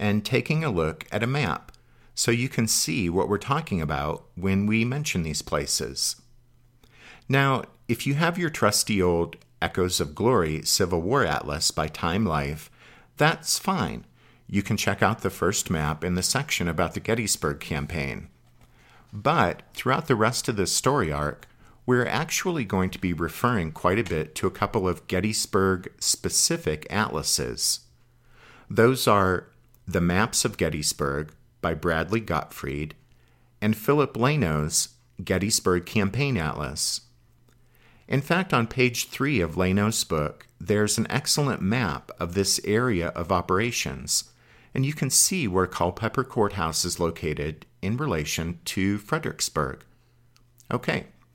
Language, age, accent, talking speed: English, 50-69, American, 140 wpm